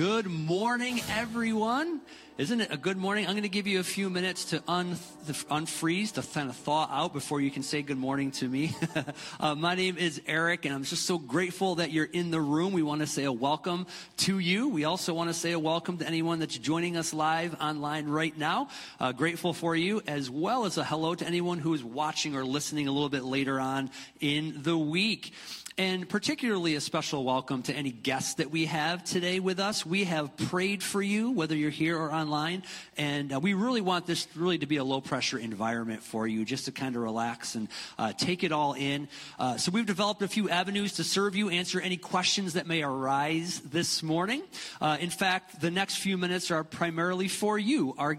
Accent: American